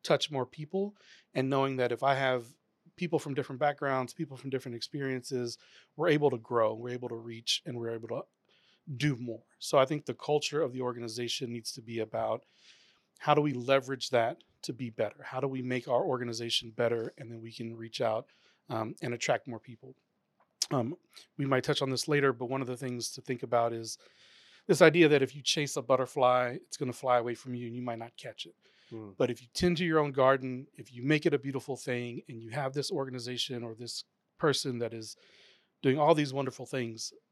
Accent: American